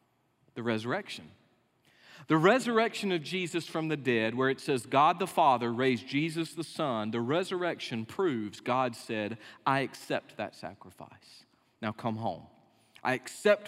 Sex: male